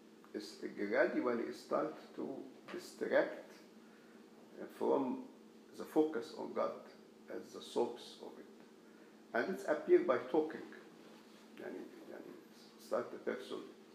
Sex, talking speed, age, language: male, 115 wpm, 50-69, English